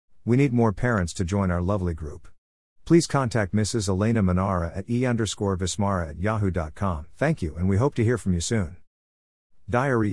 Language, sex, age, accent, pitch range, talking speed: English, male, 50-69, American, 90-120 Hz, 170 wpm